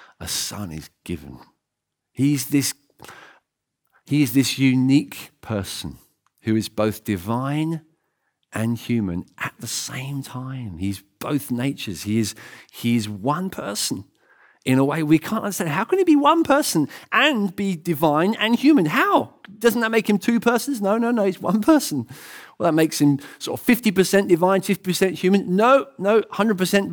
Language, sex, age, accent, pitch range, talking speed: English, male, 50-69, British, 120-195 Hz, 160 wpm